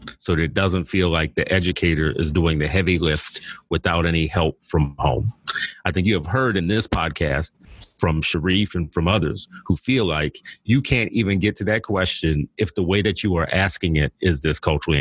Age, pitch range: 30-49, 85-100 Hz